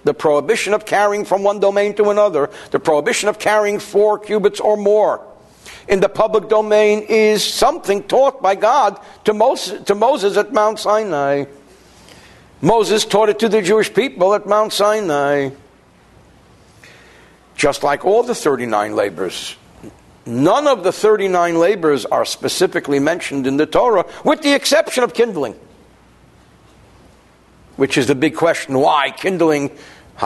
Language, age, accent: English, 60-79, American